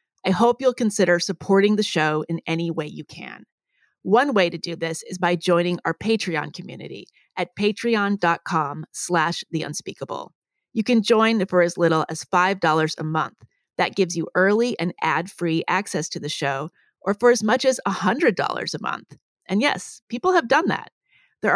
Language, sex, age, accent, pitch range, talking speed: English, female, 30-49, American, 170-225 Hz, 175 wpm